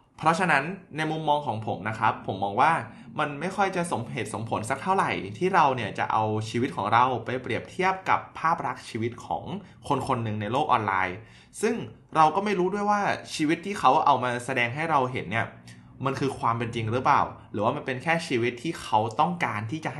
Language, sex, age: Thai, male, 20-39